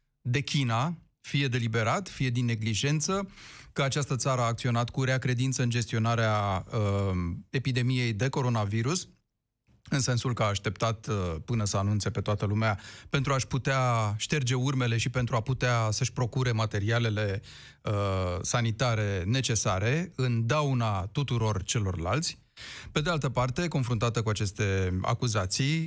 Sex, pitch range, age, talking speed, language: male, 105-135 Hz, 30-49, 135 wpm, Romanian